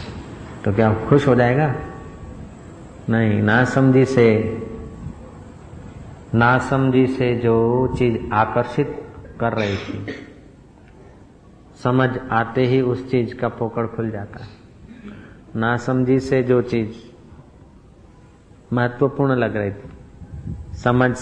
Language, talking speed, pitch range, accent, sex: Hindi, 105 wpm, 110-125 Hz, native, male